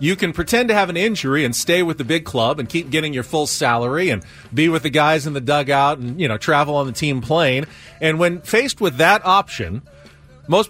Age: 40-59